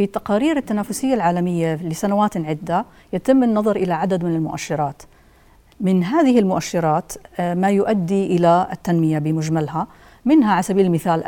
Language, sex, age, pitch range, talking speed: Arabic, female, 40-59, 165-200 Hz, 130 wpm